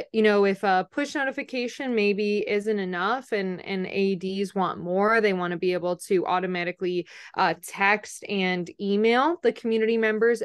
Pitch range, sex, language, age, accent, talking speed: 180-210 Hz, female, English, 20-39, American, 160 wpm